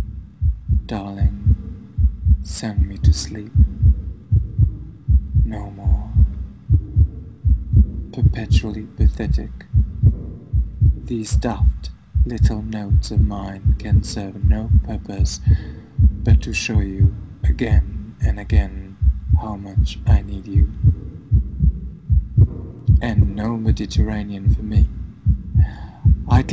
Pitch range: 80-105 Hz